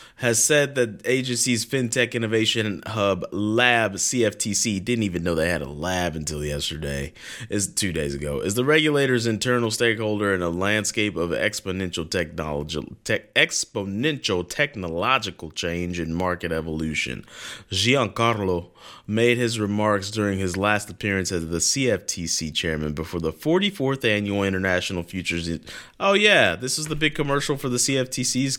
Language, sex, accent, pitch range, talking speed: English, male, American, 90-125 Hz, 145 wpm